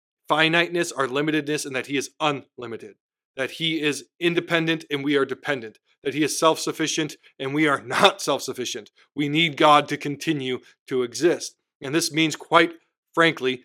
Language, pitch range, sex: English, 140-165 Hz, male